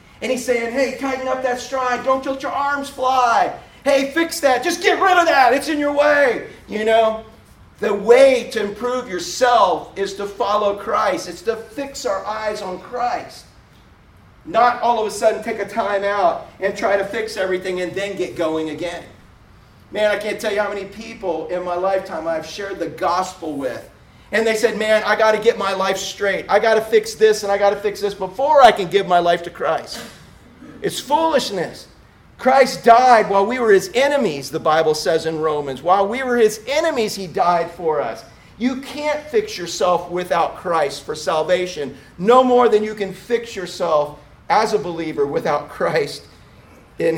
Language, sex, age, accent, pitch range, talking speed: English, male, 40-59, American, 175-245 Hz, 195 wpm